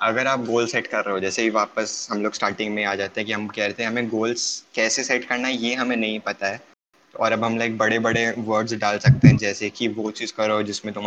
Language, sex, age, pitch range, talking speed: Hindi, male, 20-39, 105-120 Hz, 270 wpm